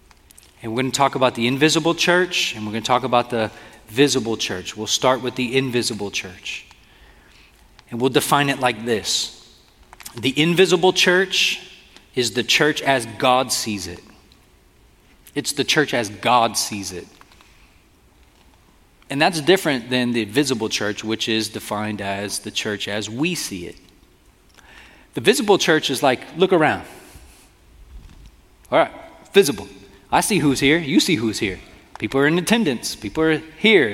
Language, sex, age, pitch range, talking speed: English, male, 30-49, 110-165 Hz, 155 wpm